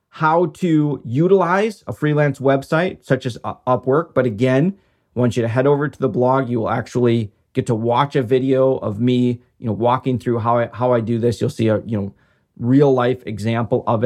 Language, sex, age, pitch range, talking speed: English, male, 30-49, 120-140 Hz, 210 wpm